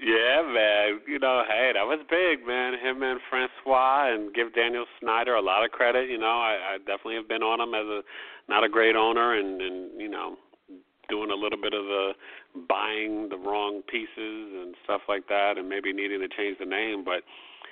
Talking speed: 205 wpm